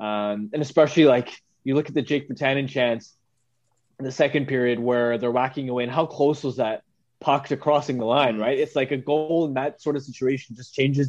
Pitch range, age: 125-150 Hz, 20-39